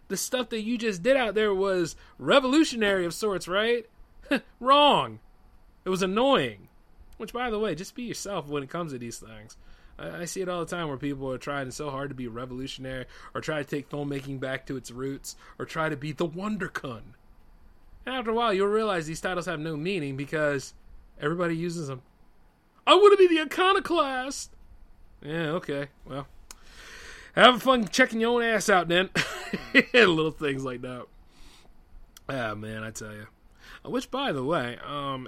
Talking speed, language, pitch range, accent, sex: 180 wpm, English, 125-195 Hz, American, male